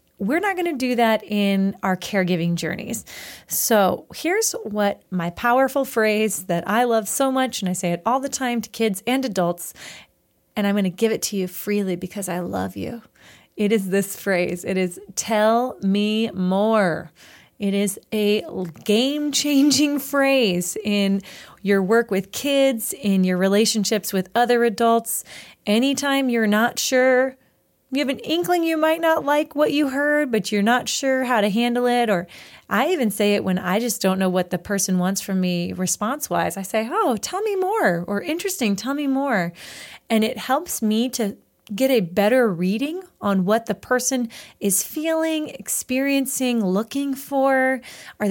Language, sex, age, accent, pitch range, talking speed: English, female, 30-49, American, 195-265 Hz, 175 wpm